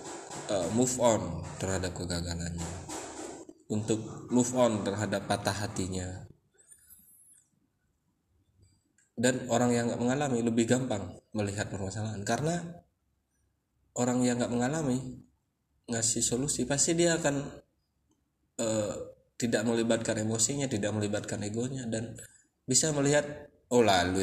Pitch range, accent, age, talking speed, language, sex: 100-125 Hz, native, 20-39, 105 wpm, Indonesian, male